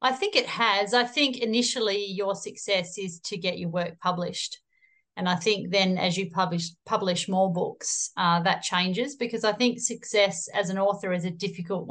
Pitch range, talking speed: 185-215 Hz, 190 wpm